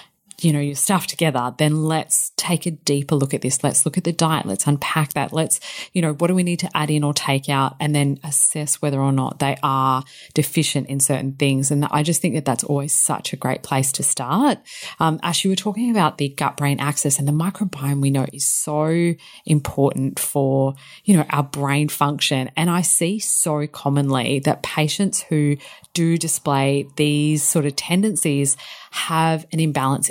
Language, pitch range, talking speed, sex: English, 145-170 Hz, 195 wpm, female